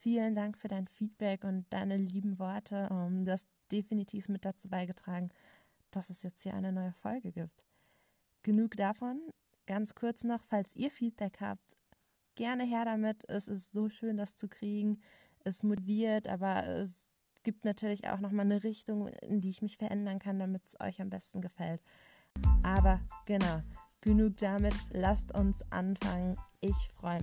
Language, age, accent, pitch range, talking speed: German, 20-39, German, 175-205 Hz, 160 wpm